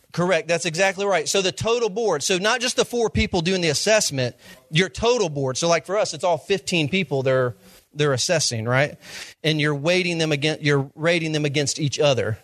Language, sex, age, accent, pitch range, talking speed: English, male, 40-59, American, 150-185 Hz, 205 wpm